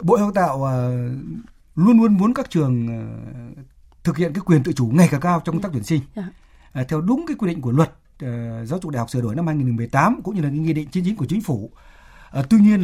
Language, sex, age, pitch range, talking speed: Vietnamese, male, 60-79, 135-200 Hz, 235 wpm